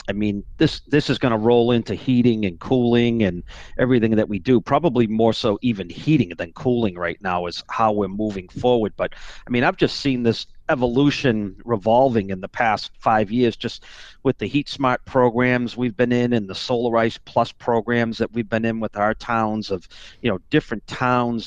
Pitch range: 110-130 Hz